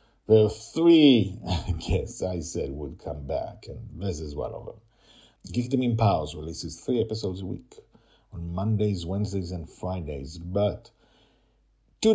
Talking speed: 160 wpm